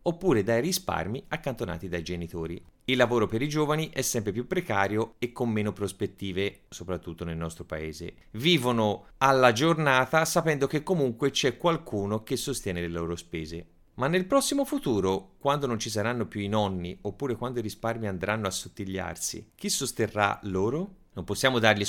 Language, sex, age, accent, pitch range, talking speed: Italian, male, 30-49, native, 95-125 Hz, 165 wpm